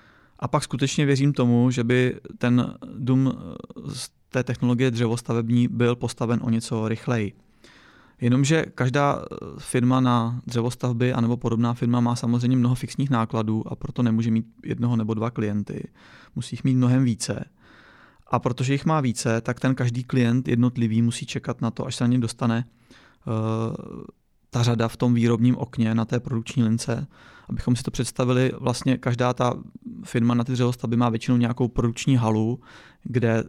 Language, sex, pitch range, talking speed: Czech, male, 115-130 Hz, 165 wpm